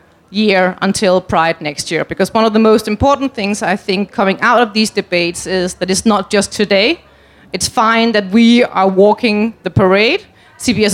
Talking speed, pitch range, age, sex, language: 185 wpm, 195-255 Hz, 30-49, female, Danish